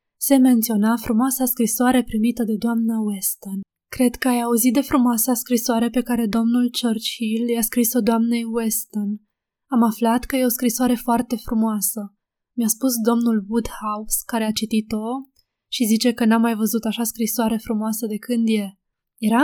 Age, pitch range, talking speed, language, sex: 20-39, 215-245 Hz, 155 wpm, Romanian, female